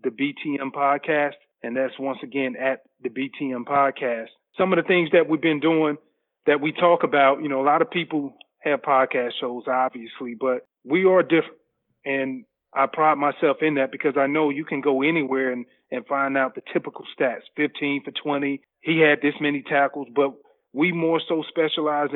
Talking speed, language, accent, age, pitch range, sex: 190 wpm, English, American, 30-49, 135-150 Hz, male